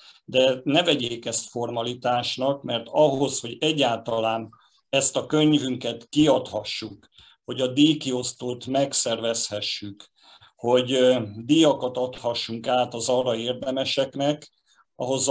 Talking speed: 100 wpm